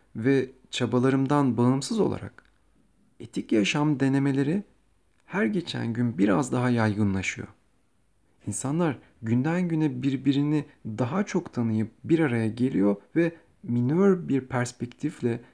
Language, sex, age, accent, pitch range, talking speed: Turkish, male, 40-59, native, 105-150 Hz, 105 wpm